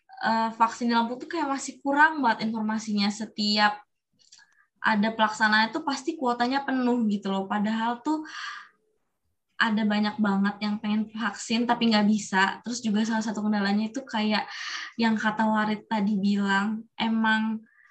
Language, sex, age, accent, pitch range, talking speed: Indonesian, female, 20-39, native, 210-235 Hz, 140 wpm